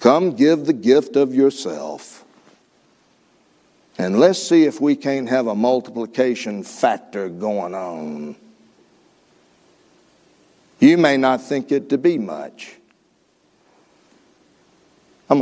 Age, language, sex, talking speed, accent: 60-79, English, male, 105 wpm, American